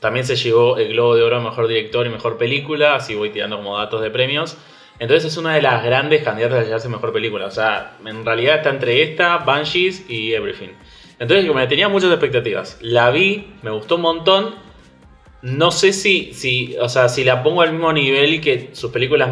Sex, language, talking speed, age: male, Spanish, 210 wpm, 20-39